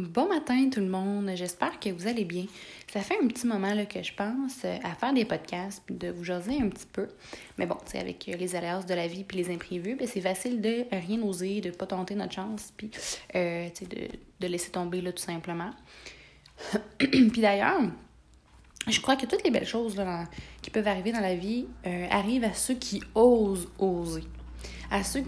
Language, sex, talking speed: French, female, 205 wpm